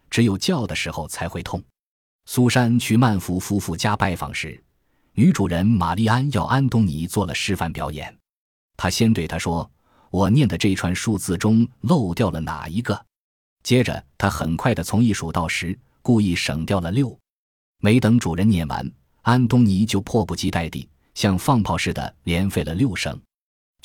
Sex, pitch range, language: male, 85-115 Hz, Chinese